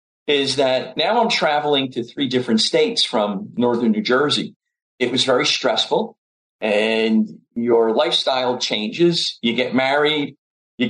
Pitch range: 120-165 Hz